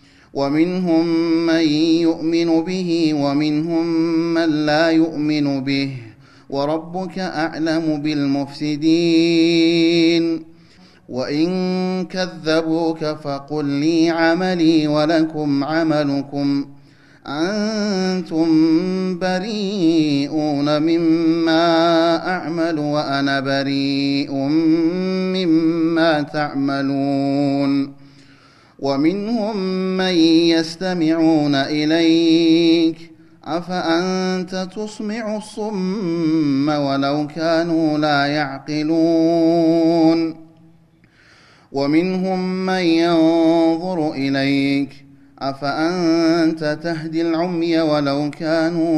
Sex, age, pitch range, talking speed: male, 30-49, 150-165 Hz, 60 wpm